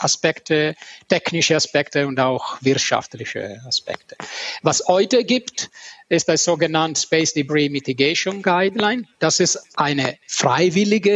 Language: German